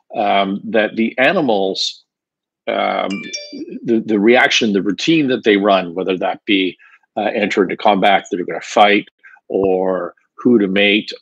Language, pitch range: English, 100-115 Hz